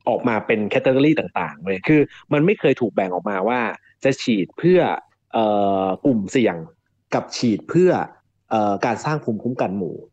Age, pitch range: 30-49, 105-150 Hz